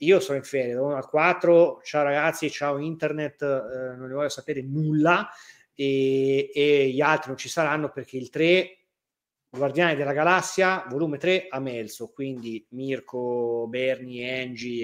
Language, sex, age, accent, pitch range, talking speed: Italian, male, 30-49, native, 130-165 Hz, 160 wpm